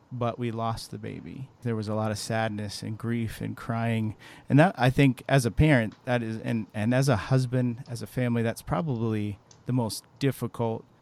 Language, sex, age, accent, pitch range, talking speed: English, male, 40-59, American, 110-130 Hz, 200 wpm